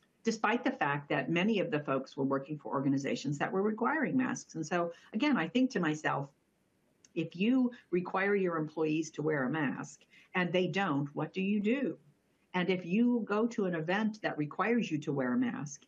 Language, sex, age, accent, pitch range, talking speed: English, female, 50-69, American, 140-190 Hz, 200 wpm